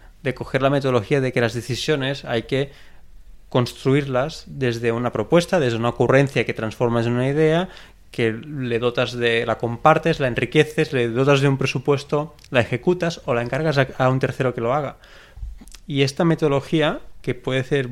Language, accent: Spanish, Spanish